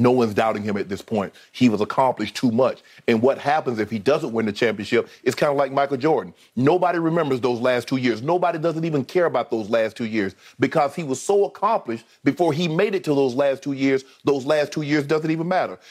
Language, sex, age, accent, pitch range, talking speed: English, male, 40-59, American, 145-205 Hz, 240 wpm